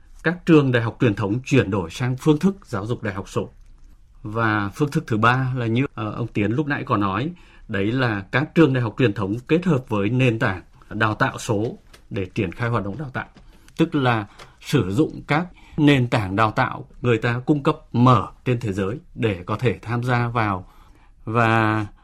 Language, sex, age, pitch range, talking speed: Vietnamese, male, 20-39, 110-145 Hz, 205 wpm